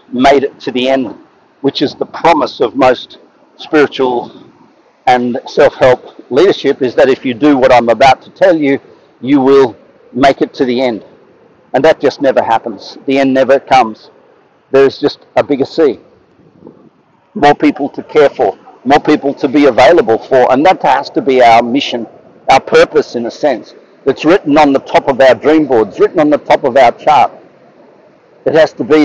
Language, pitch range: English, 130-160 Hz